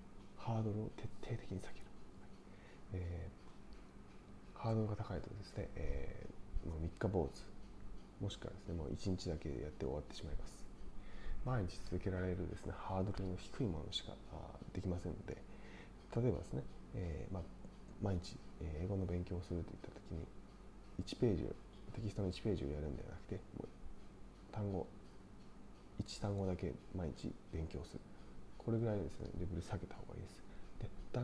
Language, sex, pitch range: Japanese, male, 90-105 Hz